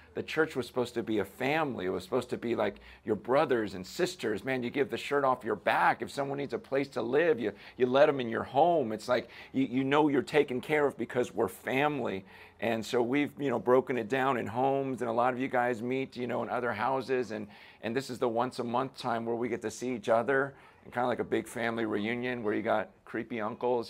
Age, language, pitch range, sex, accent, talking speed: 40-59, English, 115-135 Hz, male, American, 255 wpm